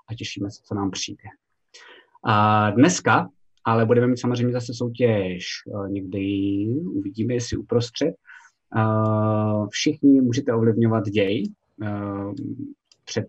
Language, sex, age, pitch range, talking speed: Czech, male, 20-39, 105-130 Hz, 115 wpm